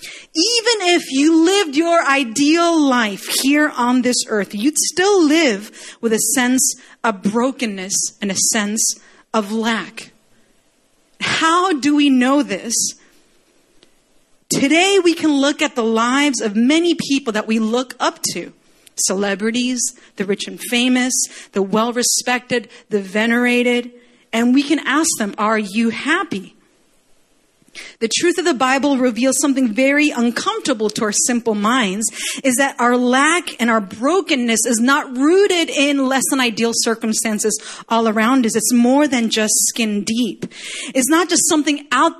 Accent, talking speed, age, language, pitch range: American, 145 wpm, 40-59, English, 225-295 Hz